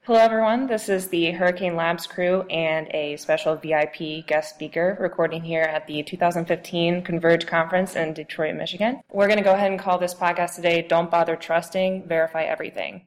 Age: 20-39